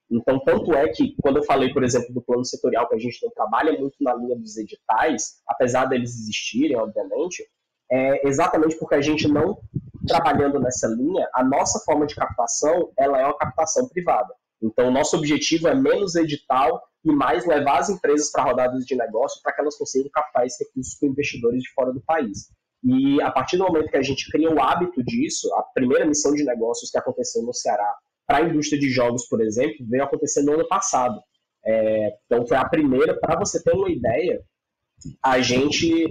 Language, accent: English, Brazilian